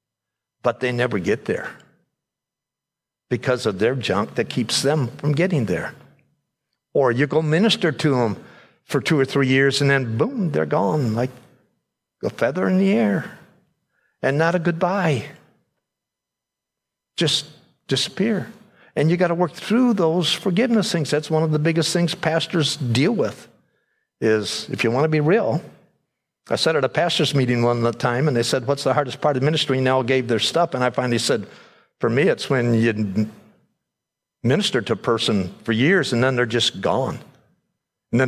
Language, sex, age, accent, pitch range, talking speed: English, male, 50-69, American, 120-165 Hz, 175 wpm